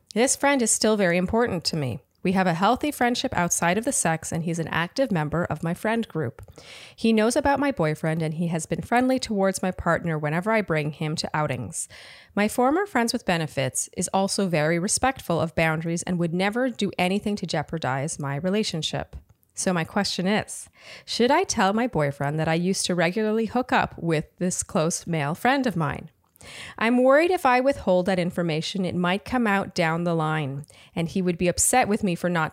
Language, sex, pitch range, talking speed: English, female, 165-230 Hz, 205 wpm